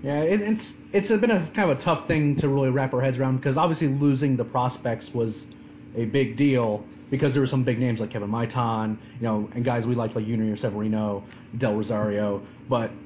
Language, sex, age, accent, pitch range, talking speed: English, male, 30-49, American, 120-150 Hz, 215 wpm